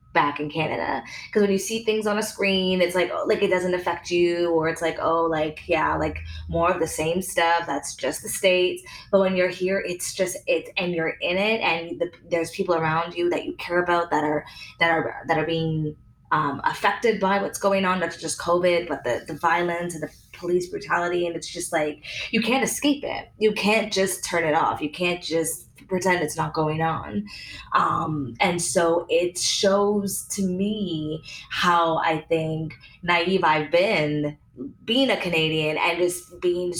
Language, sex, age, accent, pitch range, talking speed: English, female, 20-39, American, 155-180 Hz, 195 wpm